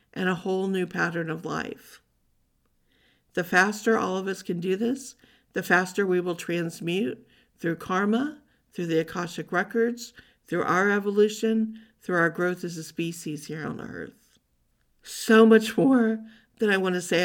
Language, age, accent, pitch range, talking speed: English, 50-69, American, 170-215 Hz, 160 wpm